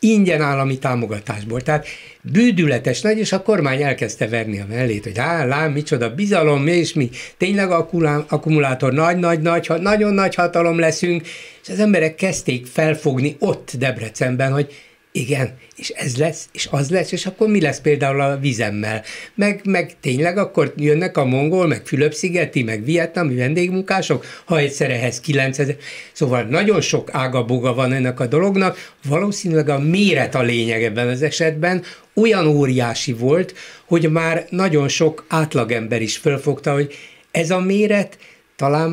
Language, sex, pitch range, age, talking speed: Hungarian, male, 125-165 Hz, 60-79, 145 wpm